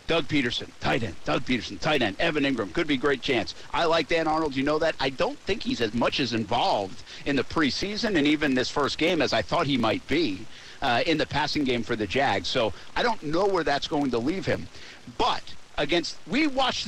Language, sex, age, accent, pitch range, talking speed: English, male, 50-69, American, 160-250 Hz, 235 wpm